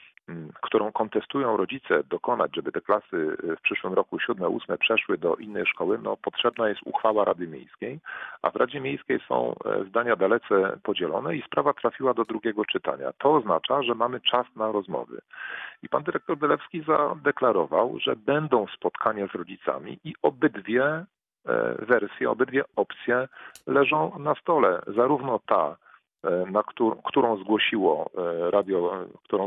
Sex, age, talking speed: male, 40-59, 140 wpm